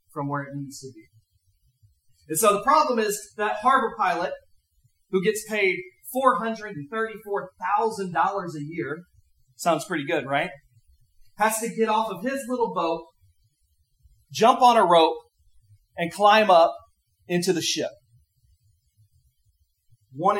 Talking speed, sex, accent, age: 125 wpm, male, American, 40-59